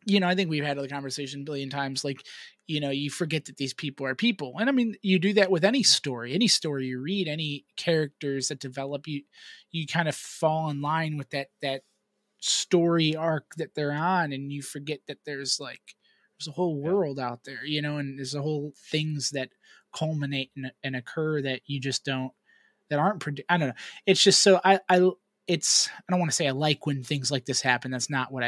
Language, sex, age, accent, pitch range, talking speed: English, male, 20-39, American, 140-180 Hz, 225 wpm